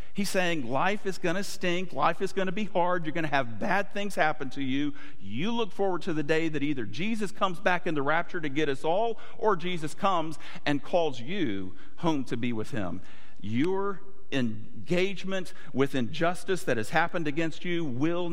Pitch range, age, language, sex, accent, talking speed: 125-175 Hz, 50-69, English, male, American, 200 wpm